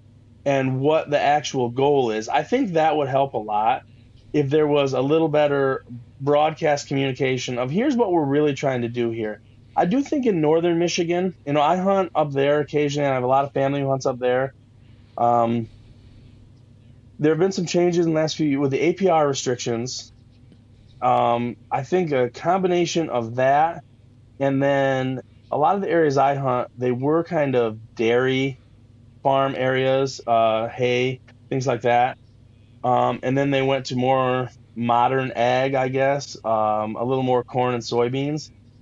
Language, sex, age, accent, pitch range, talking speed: English, male, 30-49, American, 115-140 Hz, 180 wpm